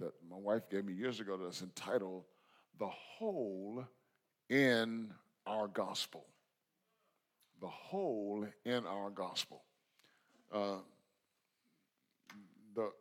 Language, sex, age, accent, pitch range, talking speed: English, male, 50-69, American, 105-160 Hz, 95 wpm